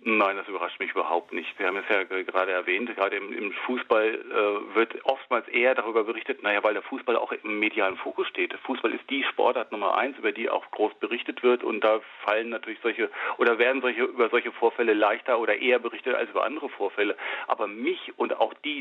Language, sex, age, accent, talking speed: German, male, 40-59, German, 215 wpm